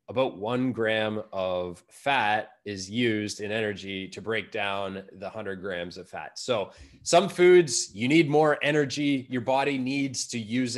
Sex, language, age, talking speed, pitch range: male, English, 20-39, 160 wpm, 110-140 Hz